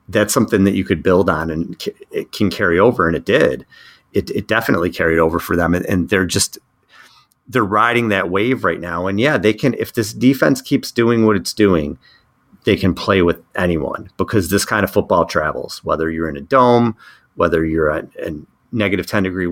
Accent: American